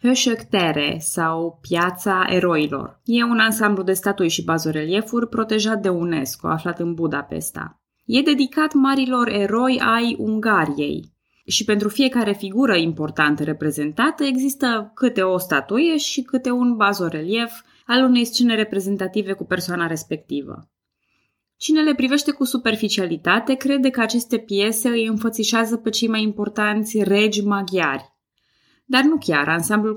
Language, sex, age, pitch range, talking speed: Romanian, female, 20-39, 170-235 Hz, 130 wpm